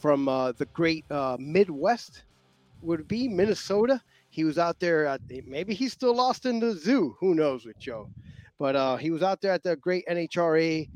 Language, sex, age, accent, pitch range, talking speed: English, male, 30-49, American, 140-165 Hz, 185 wpm